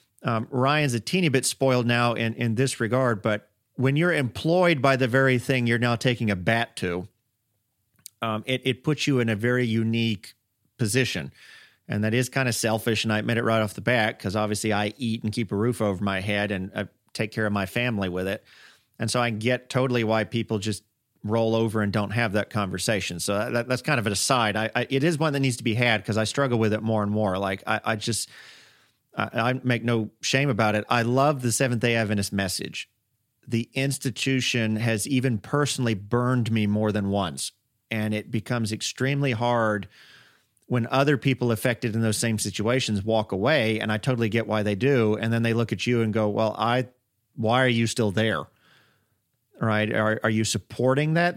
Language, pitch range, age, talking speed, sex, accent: English, 110-130 Hz, 40-59, 210 wpm, male, American